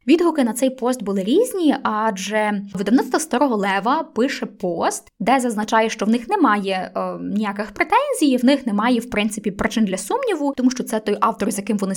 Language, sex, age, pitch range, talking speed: Ukrainian, female, 10-29, 200-255 Hz, 180 wpm